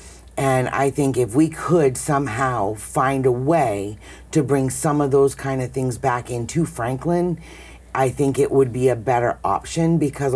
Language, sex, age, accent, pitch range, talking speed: English, female, 50-69, American, 110-135 Hz, 175 wpm